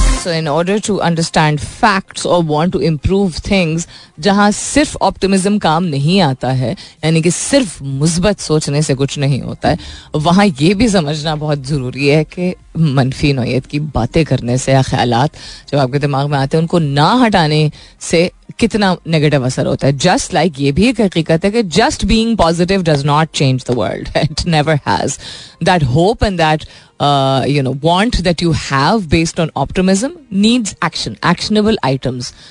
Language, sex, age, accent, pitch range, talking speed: Hindi, female, 30-49, native, 145-195 Hz, 175 wpm